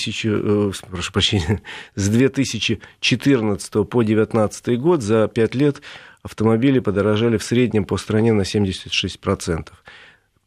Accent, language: native, Russian